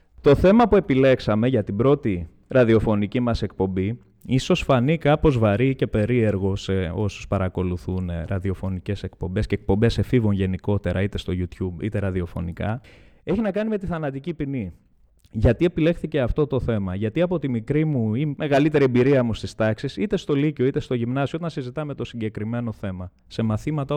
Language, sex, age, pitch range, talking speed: Greek, male, 20-39, 105-165 Hz, 165 wpm